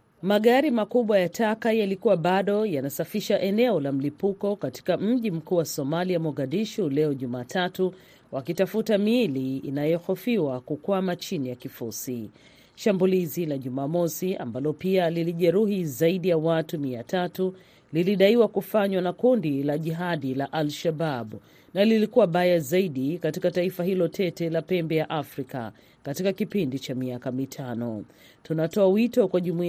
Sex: female